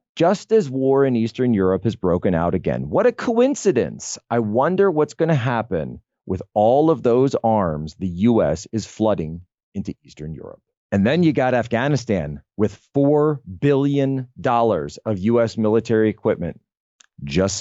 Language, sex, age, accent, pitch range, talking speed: English, male, 30-49, American, 90-120 Hz, 145 wpm